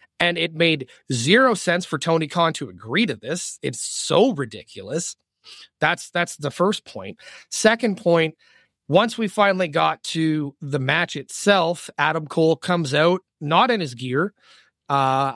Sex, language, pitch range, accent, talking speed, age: male, English, 140-175 Hz, American, 150 wpm, 30-49